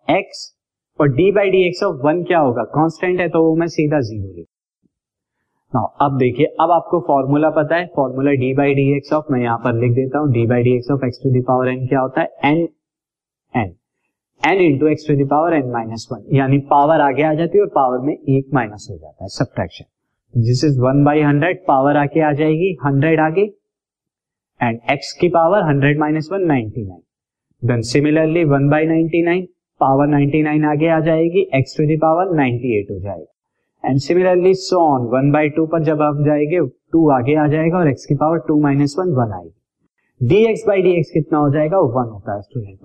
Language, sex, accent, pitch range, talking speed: Hindi, male, native, 130-160 Hz, 140 wpm